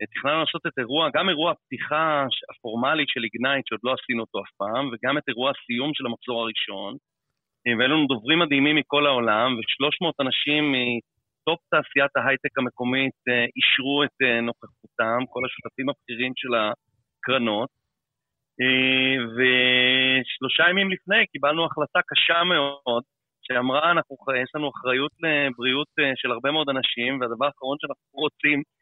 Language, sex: Hebrew, male